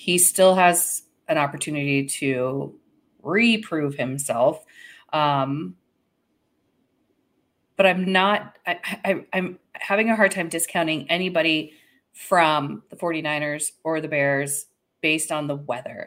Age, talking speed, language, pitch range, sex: 30-49, 115 wpm, English, 150-185 Hz, female